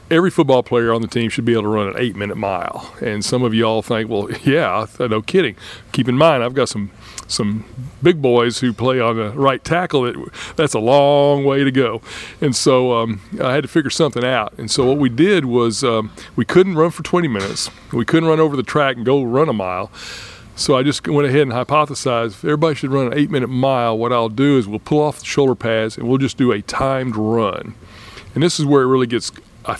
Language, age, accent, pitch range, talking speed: English, 40-59, American, 115-140 Hz, 240 wpm